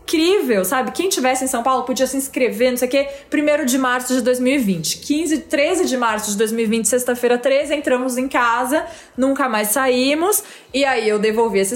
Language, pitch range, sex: Portuguese, 210-280 Hz, female